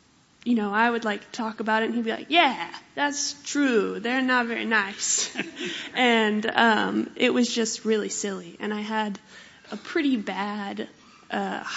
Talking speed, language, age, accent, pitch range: 170 wpm, English, 20-39, American, 205-230 Hz